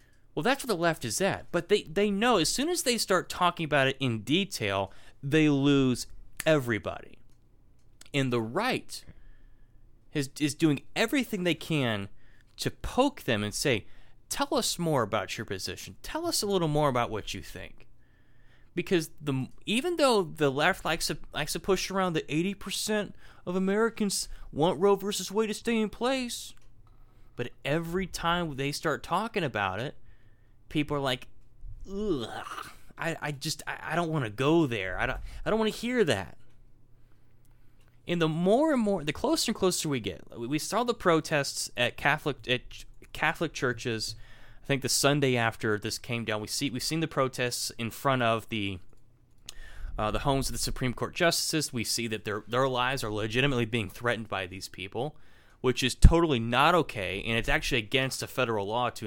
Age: 30-49